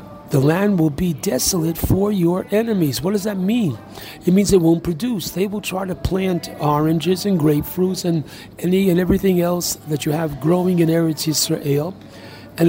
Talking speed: 180 wpm